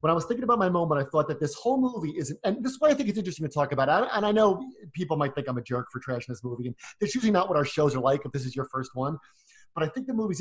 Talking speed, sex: 340 wpm, male